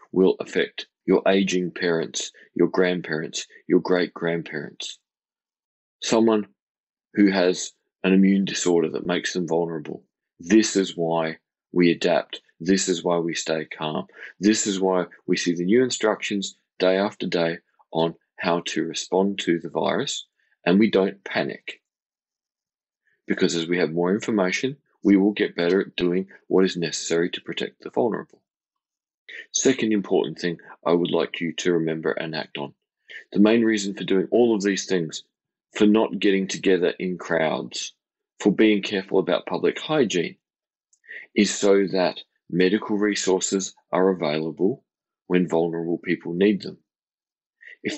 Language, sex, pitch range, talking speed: English, male, 85-100 Hz, 150 wpm